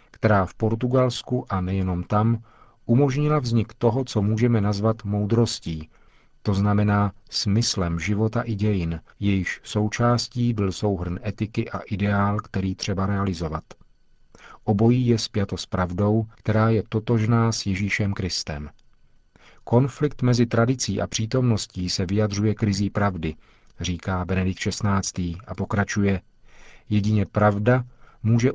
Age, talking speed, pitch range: 40-59, 120 wpm, 100-115 Hz